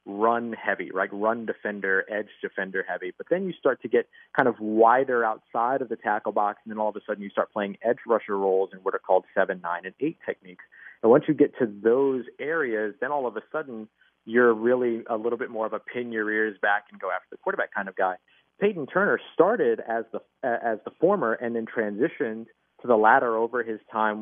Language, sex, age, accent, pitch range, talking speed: English, male, 30-49, American, 100-125 Hz, 230 wpm